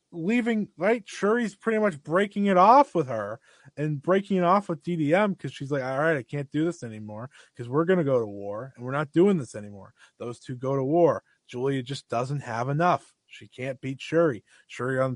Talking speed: 220 wpm